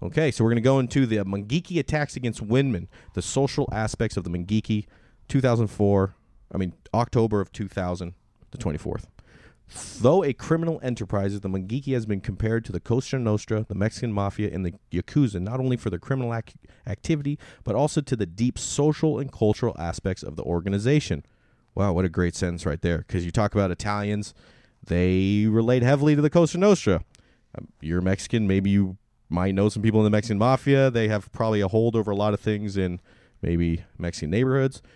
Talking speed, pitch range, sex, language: 185 wpm, 95-120 Hz, male, English